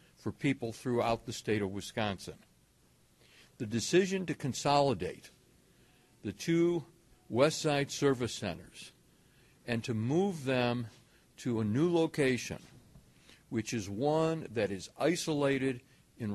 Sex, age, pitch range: male, 60-79, 110-145 Hz